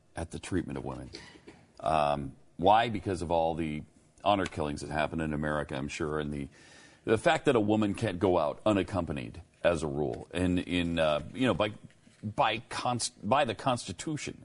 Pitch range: 80-110 Hz